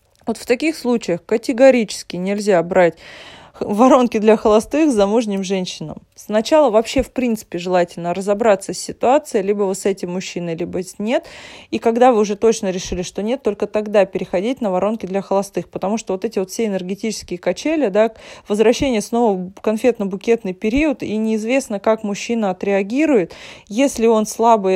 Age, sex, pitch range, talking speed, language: 20-39, female, 190-230 Hz, 160 wpm, Russian